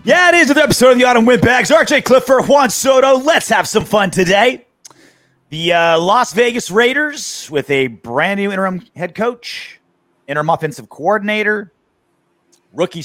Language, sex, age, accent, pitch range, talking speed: English, male, 30-49, American, 145-210 Hz, 160 wpm